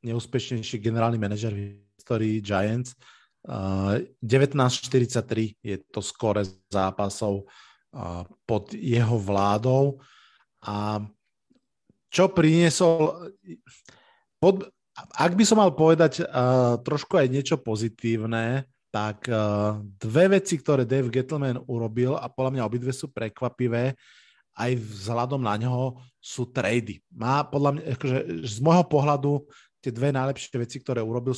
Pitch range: 115-140 Hz